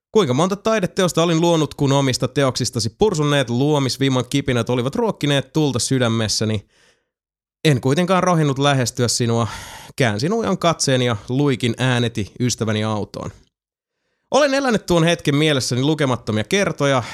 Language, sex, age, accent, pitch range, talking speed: Finnish, male, 30-49, native, 120-160 Hz, 125 wpm